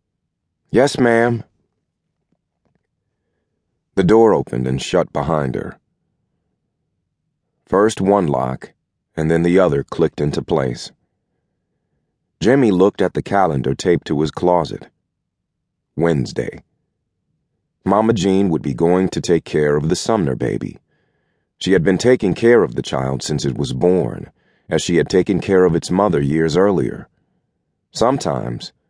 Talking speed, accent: 135 wpm, American